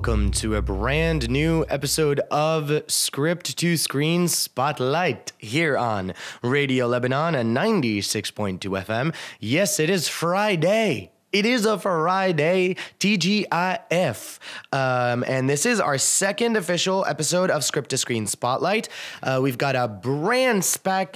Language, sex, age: English, male, 20-39